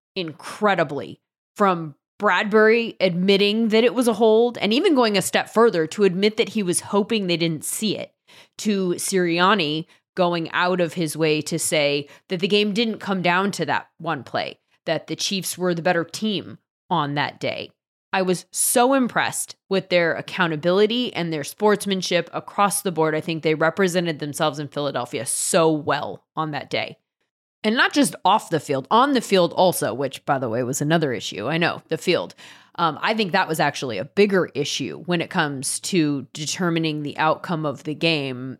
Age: 20-39